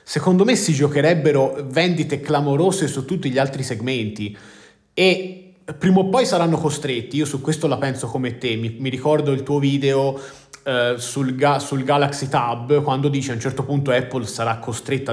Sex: male